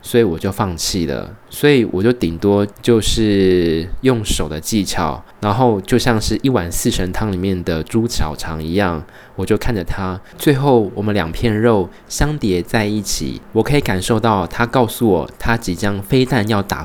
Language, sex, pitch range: Chinese, male, 90-115 Hz